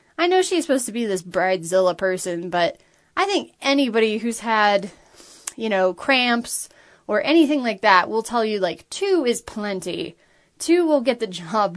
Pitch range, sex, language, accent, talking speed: 200-290 Hz, female, English, American, 175 wpm